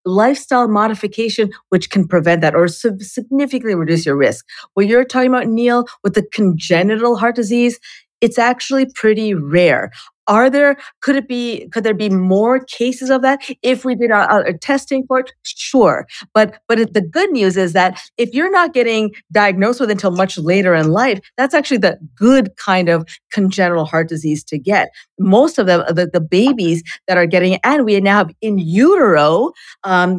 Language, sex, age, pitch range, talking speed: English, female, 40-59, 185-250 Hz, 180 wpm